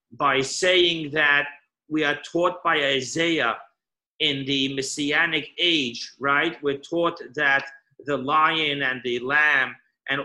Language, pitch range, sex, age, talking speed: English, 140-170 Hz, male, 40-59, 130 wpm